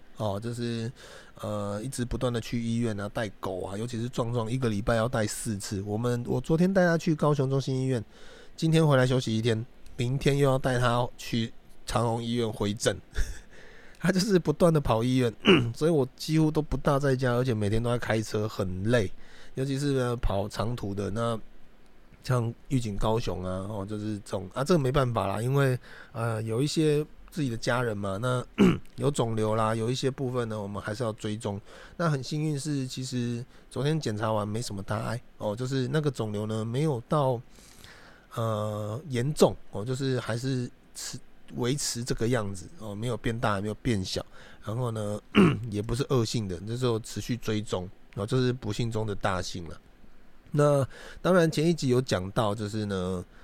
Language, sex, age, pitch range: Chinese, male, 30-49, 105-130 Hz